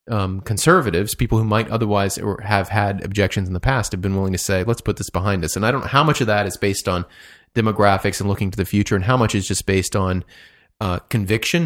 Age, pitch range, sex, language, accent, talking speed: 30-49, 100-135 Hz, male, English, American, 245 wpm